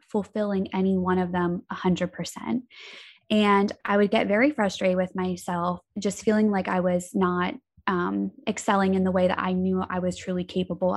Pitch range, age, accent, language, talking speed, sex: 190-235 Hz, 10-29, American, English, 175 wpm, female